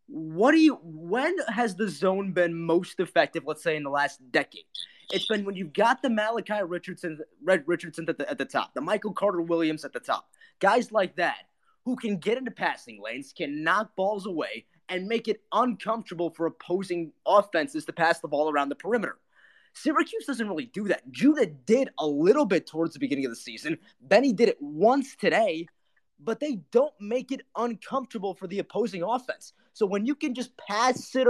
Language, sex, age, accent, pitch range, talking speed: English, male, 20-39, American, 170-245 Hz, 195 wpm